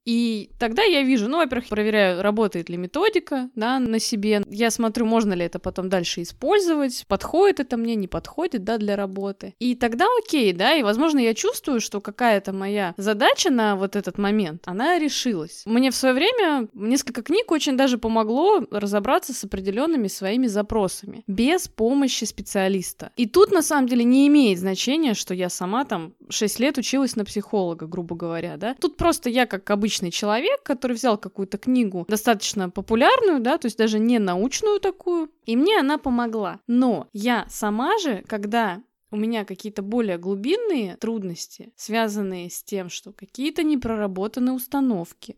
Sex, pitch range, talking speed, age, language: female, 200-260 Hz, 165 wpm, 20-39, Russian